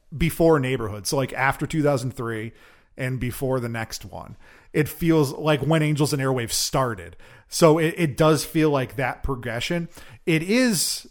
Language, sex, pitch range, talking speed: English, male, 125-160 Hz, 165 wpm